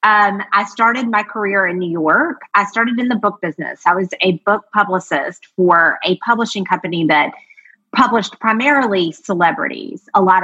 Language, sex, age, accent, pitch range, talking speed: English, female, 30-49, American, 170-205 Hz, 165 wpm